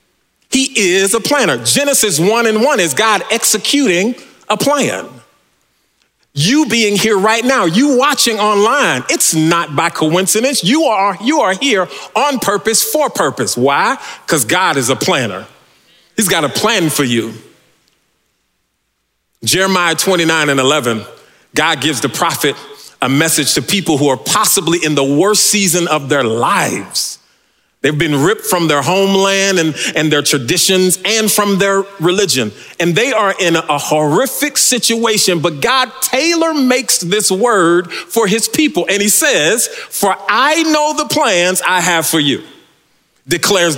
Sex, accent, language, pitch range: male, American, English, 160-225 Hz